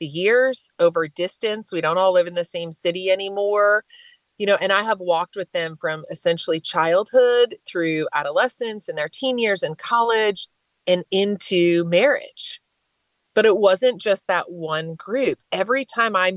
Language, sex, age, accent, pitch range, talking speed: English, female, 30-49, American, 165-210 Hz, 165 wpm